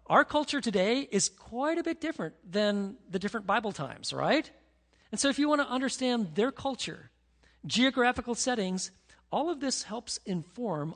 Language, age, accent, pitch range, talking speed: English, 40-59, American, 175-255 Hz, 165 wpm